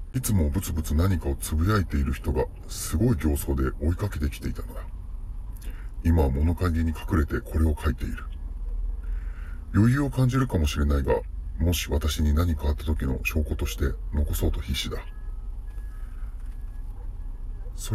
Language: Japanese